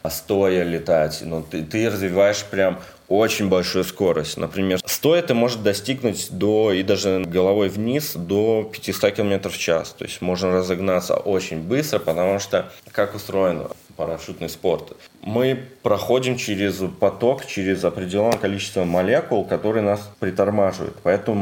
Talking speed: 140 wpm